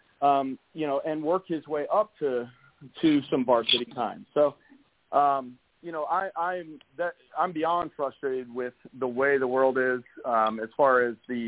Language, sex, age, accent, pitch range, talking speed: English, male, 40-59, American, 130-165 Hz, 180 wpm